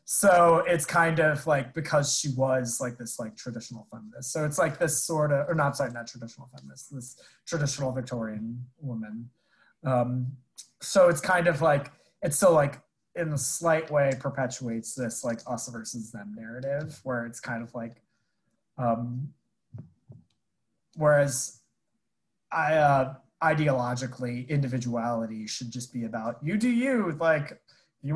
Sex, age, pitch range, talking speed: male, 20-39, 125-165 Hz, 145 wpm